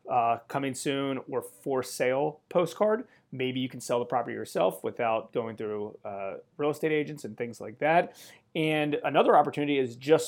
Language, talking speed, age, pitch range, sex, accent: English, 175 wpm, 30-49, 115-140 Hz, male, American